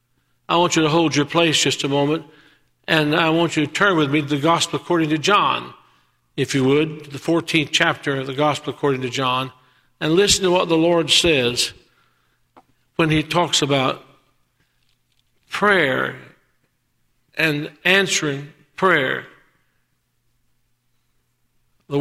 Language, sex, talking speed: English, male, 140 wpm